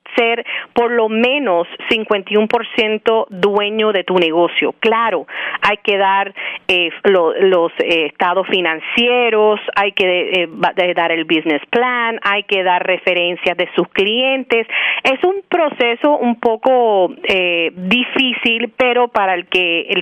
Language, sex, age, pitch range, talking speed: Spanish, female, 40-59, 185-235 Hz, 130 wpm